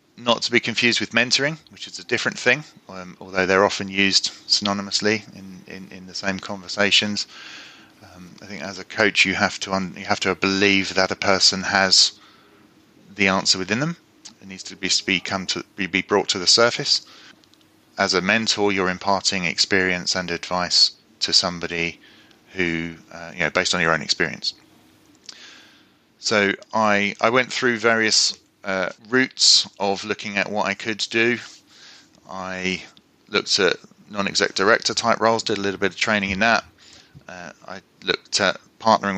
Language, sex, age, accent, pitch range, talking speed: English, male, 30-49, British, 95-110 Hz, 170 wpm